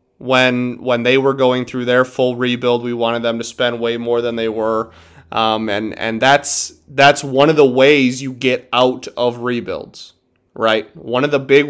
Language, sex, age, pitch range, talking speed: English, male, 20-39, 115-135 Hz, 195 wpm